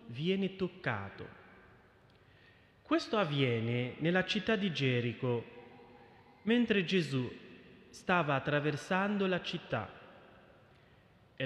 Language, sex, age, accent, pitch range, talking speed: Italian, male, 30-49, native, 125-185 Hz, 80 wpm